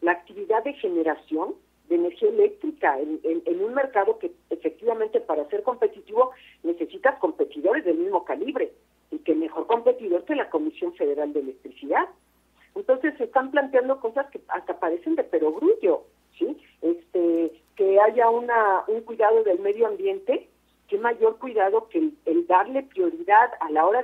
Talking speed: 150 wpm